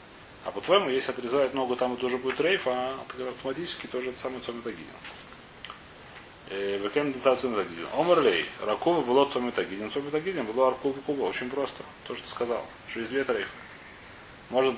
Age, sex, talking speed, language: 30-49, male, 140 wpm, Russian